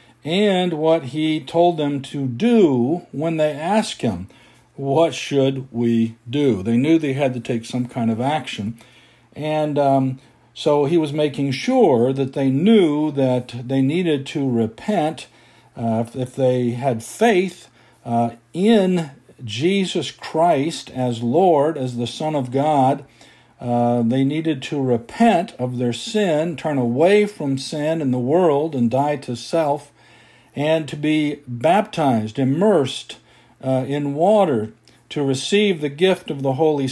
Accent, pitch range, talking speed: American, 120-155 Hz, 145 wpm